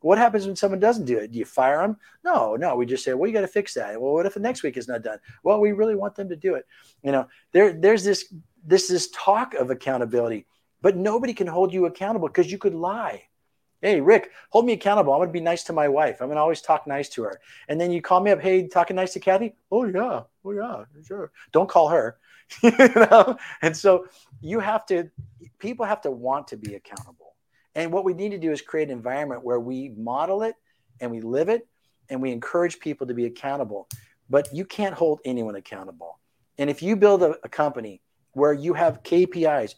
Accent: American